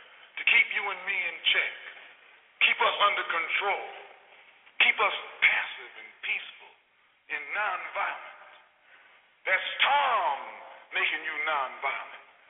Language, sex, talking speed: English, male, 110 wpm